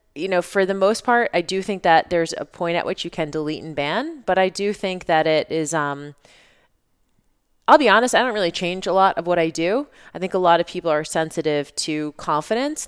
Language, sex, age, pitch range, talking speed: English, female, 20-39, 150-185 Hz, 240 wpm